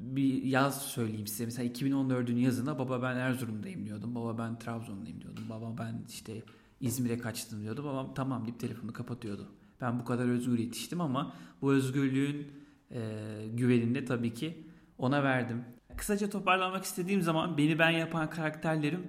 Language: Turkish